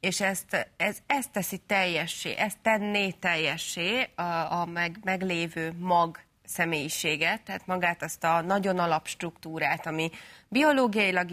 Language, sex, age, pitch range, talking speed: Hungarian, female, 30-49, 160-195 Hz, 120 wpm